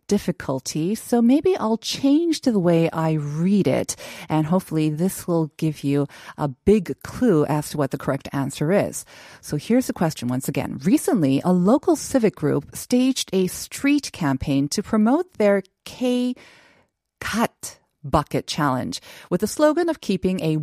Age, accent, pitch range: 40-59, American, 150-215 Hz